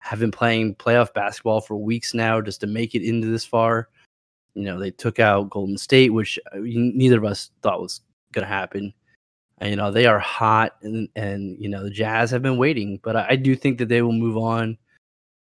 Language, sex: English, male